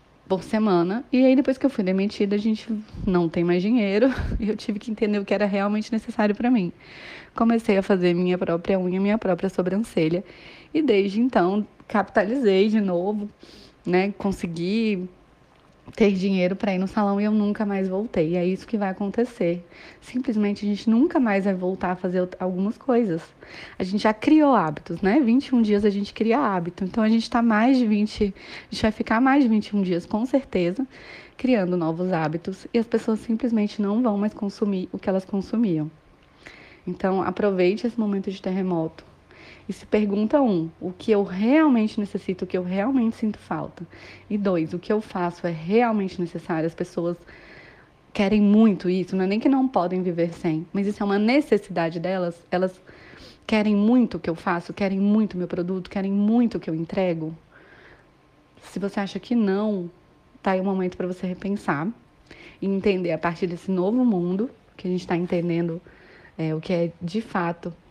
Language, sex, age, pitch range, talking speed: Portuguese, female, 20-39, 180-220 Hz, 190 wpm